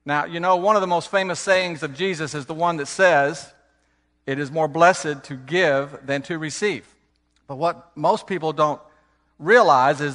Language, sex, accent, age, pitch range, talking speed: English, male, American, 50-69, 130-170 Hz, 190 wpm